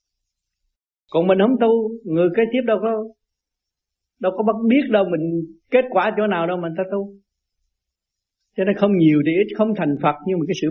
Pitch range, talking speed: 145-215 Hz, 195 wpm